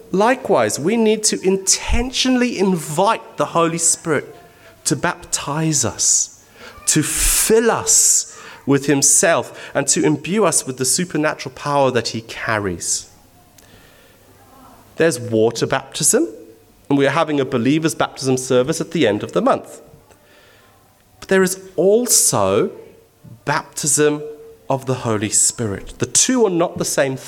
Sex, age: male, 30-49